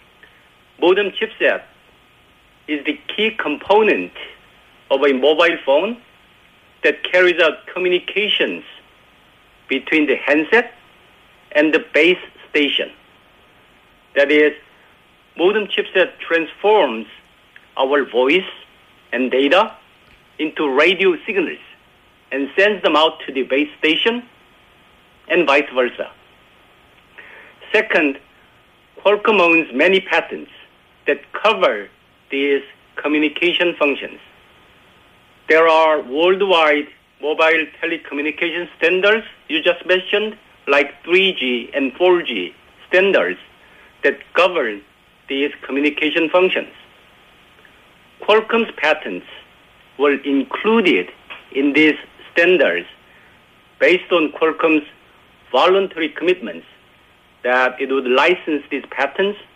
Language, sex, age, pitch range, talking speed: English, male, 50-69, 145-195 Hz, 90 wpm